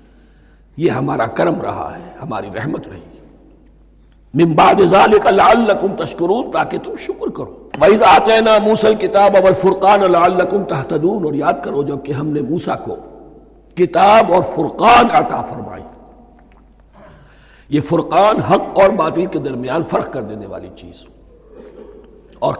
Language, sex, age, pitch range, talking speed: Urdu, male, 60-79, 160-210 Hz, 140 wpm